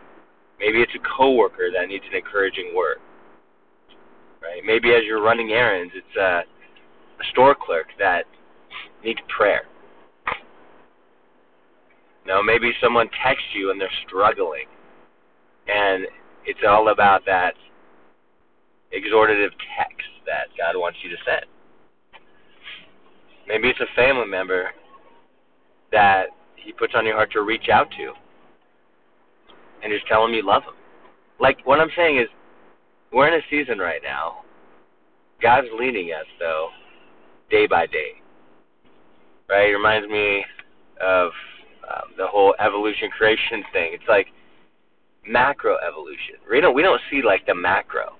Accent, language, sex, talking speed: American, English, male, 130 wpm